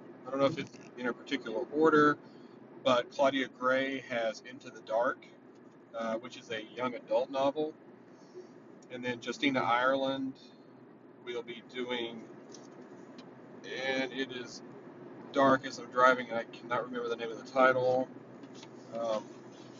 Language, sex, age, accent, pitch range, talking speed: English, male, 40-59, American, 125-140 Hz, 140 wpm